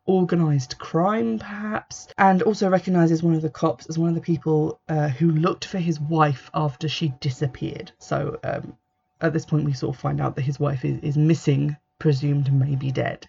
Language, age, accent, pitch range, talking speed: English, 20-39, British, 150-170 Hz, 195 wpm